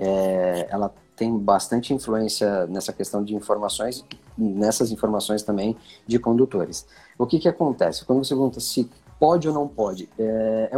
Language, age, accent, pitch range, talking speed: Portuguese, 20-39, Brazilian, 110-135 Hz, 150 wpm